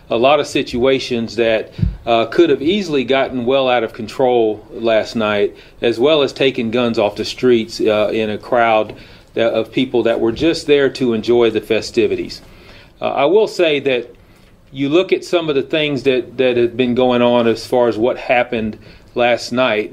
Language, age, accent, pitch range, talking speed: English, 40-59, American, 115-145 Hz, 190 wpm